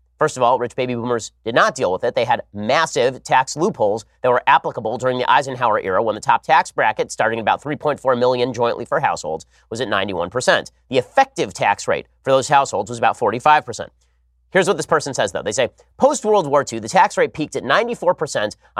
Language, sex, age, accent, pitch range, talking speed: English, male, 30-49, American, 115-160 Hz, 210 wpm